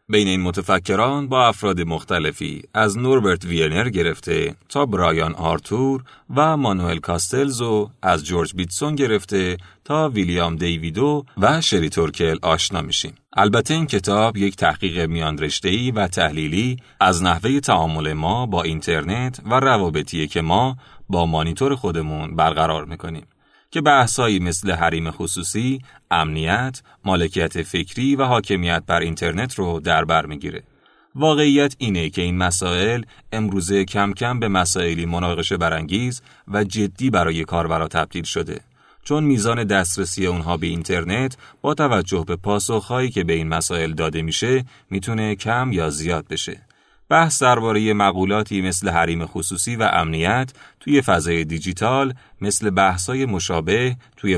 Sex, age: male, 40-59